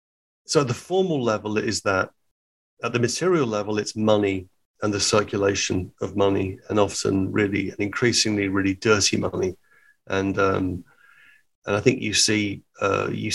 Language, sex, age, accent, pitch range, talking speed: English, male, 40-59, British, 100-120 Hz, 155 wpm